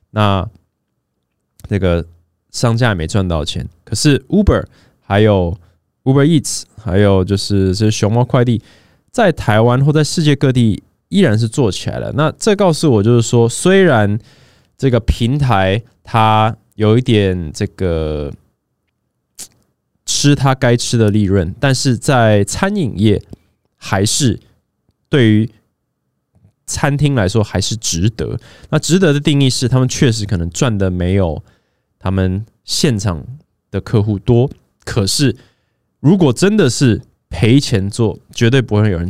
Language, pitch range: Chinese, 100-135 Hz